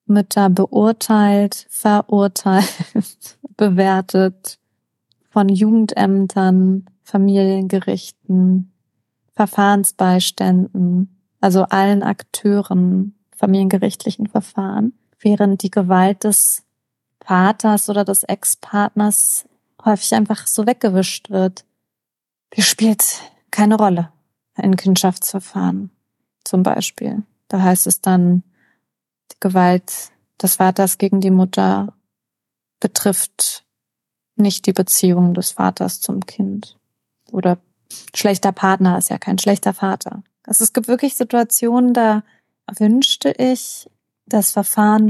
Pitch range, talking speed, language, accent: 190-215 Hz, 95 wpm, German, German